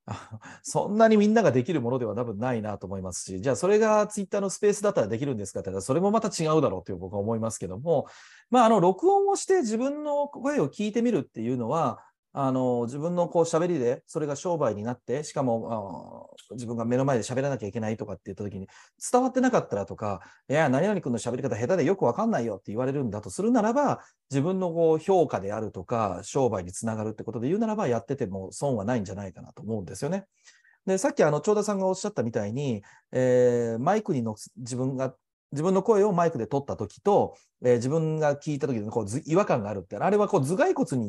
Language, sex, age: Japanese, male, 40-59